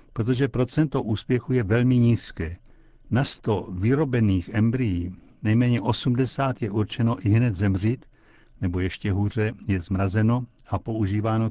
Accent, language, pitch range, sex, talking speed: native, Czech, 105-125 Hz, male, 125 wpm